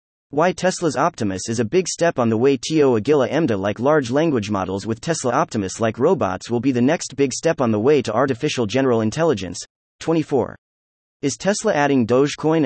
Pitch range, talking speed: 110-150 Hz, 180 wpm